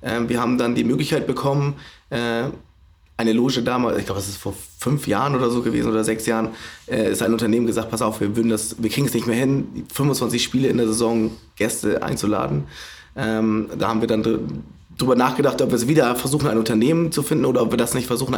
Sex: male